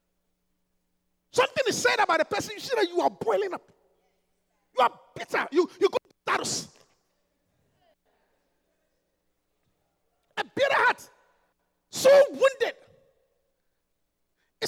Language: English